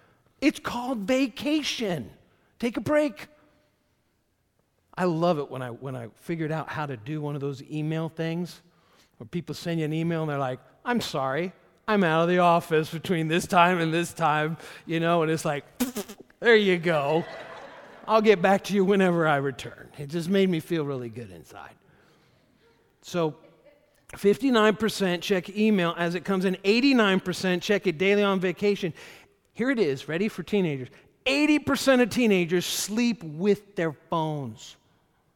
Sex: male